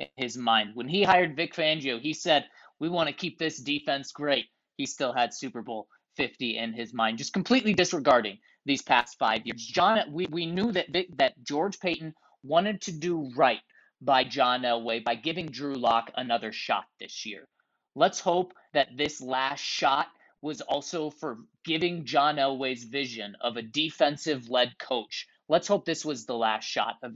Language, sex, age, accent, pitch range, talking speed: English, male, 30-49, American, 125-200 Hz, 180 wpm